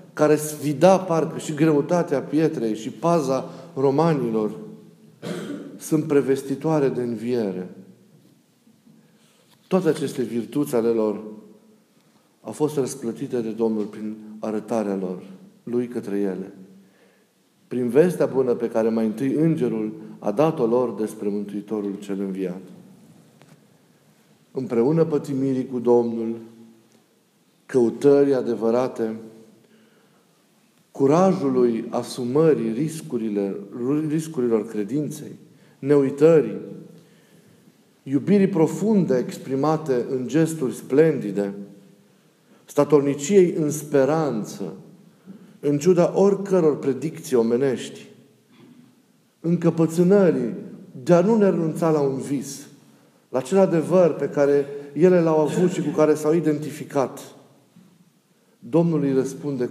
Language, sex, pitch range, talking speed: Romanian, male, 115-160 Hz, 95 wpm